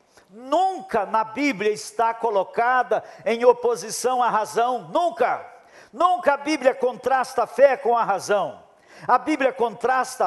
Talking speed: 130 wpm